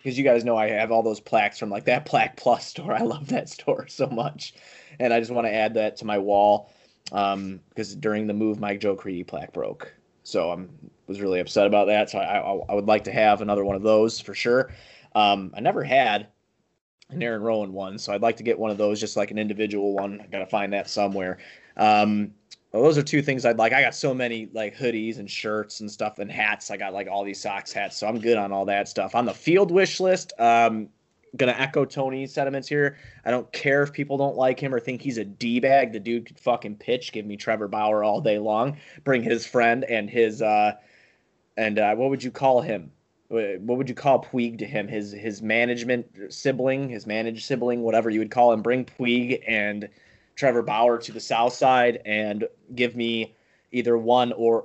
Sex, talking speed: male, 230 wpm